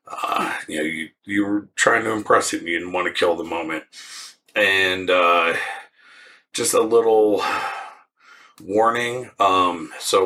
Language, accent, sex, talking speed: English, American, male, 145 wpm